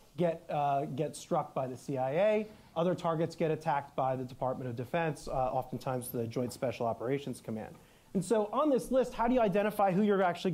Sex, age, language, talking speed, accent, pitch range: male, 30-49, English, 200 wpm, American, 150-190 Hz